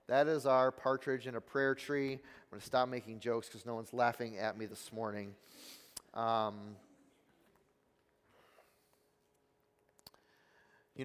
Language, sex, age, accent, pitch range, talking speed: English, male, 30-49, American, 125-145 Hz, 130 wpm